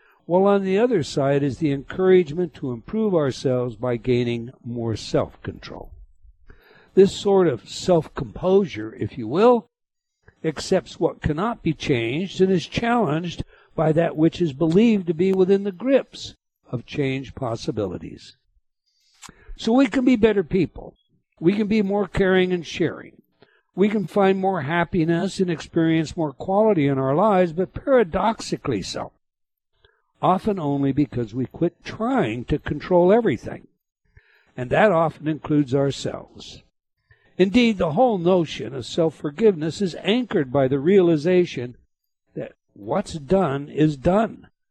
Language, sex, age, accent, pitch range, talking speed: English, male, 60-79, American, 140-195 Hz, 135 wpm